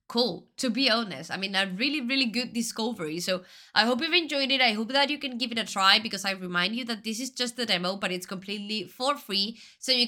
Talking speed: 255 wpm